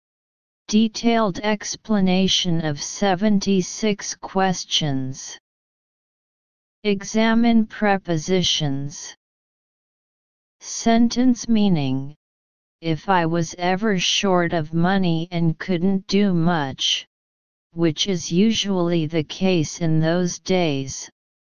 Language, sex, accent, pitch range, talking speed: English, female, American, 165-205 Hz, 80 wpm